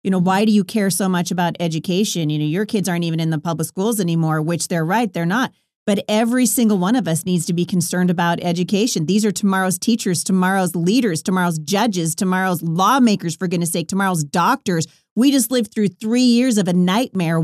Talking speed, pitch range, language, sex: 215 wpm, 175-220 Hz, English, female